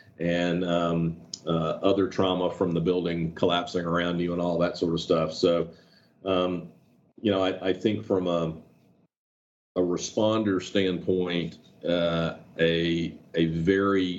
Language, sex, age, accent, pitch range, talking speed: English, male, 40-59, American, 85-95 Hz, 140 wpm